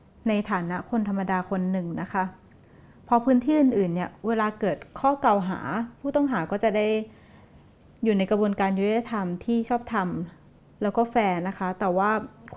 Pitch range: 190-240 Hz